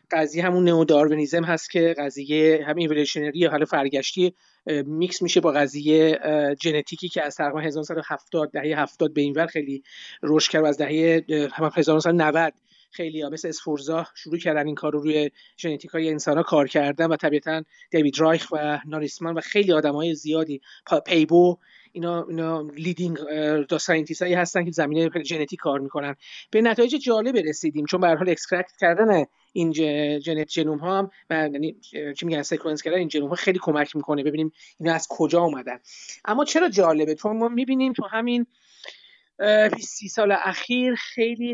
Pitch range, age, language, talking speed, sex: 150-180 Hz, 30-49, Persian, 160 wpm, male